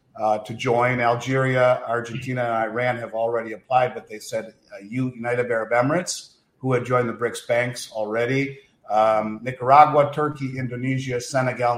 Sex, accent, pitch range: male, American, 115-130 Hz